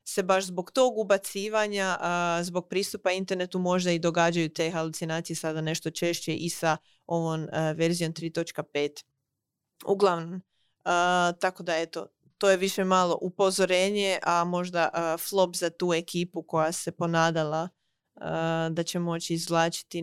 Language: Croatian